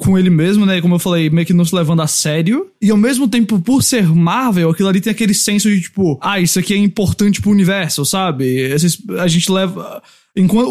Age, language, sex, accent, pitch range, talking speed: 20-39, English, male, Brazilian, 160-195 Hz, 230 wpm